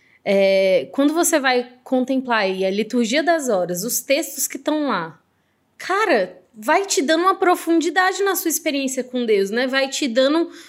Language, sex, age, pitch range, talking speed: Portuguese, female, 20-39, 220-320 Hz, 170 wpm